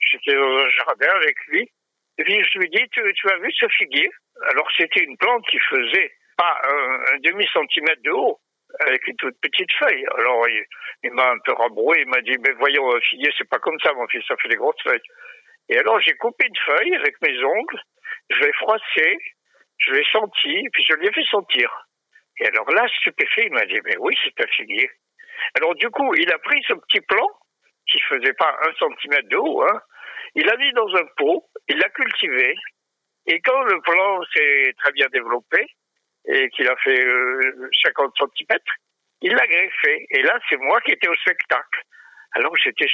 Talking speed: 205 wpm